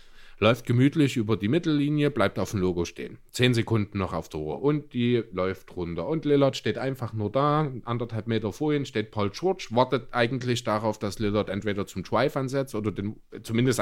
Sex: male